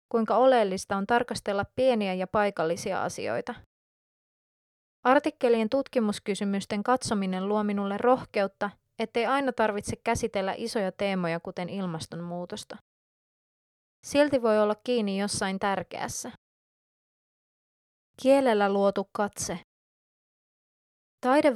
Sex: female